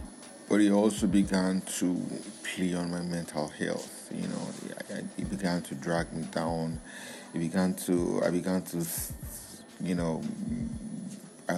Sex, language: male, English